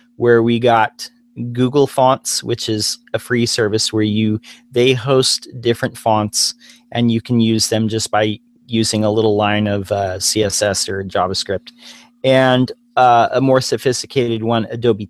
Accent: American